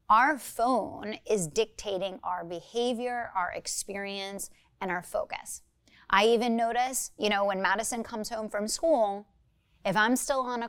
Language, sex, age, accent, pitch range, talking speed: English, female, 30-49, American, 195-255 Hz, 150 wpm